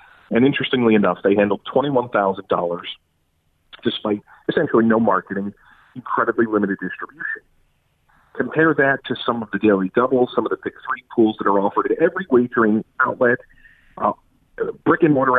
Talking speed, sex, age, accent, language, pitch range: 145 wpm, male, 40-59, American, English, 100-120 Hz